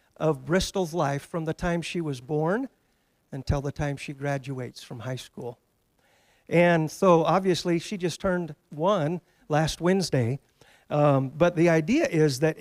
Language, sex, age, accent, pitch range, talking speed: English, male, 50-69, American, 145-180 Hz, 150 wpm